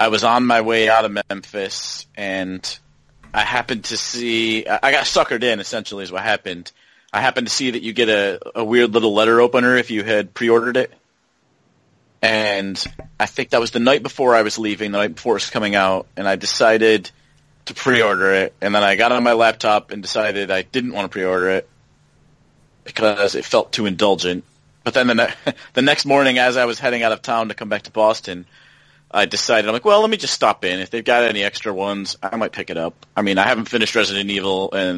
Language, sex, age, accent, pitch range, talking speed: English, male, 30-49, American, 95-115 Hz, 225 wpm